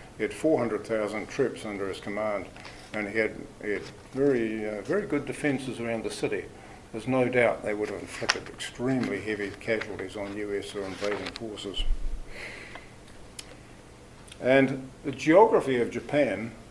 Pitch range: 105-125 Hz